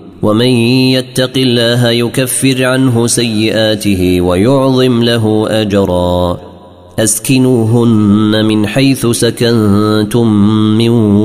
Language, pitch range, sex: Arabic, 100-115 Hz, male